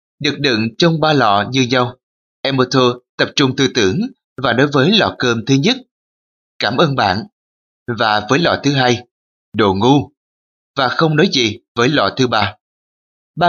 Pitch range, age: 110-140 Hz, 20-39